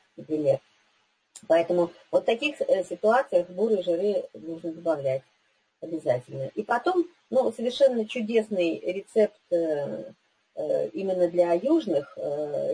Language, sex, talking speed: Russian, female, 105 wpm